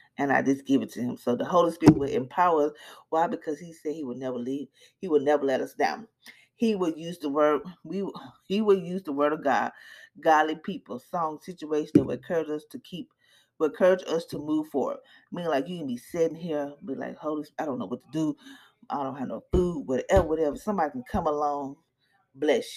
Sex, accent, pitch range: female, American, 145-185 Hz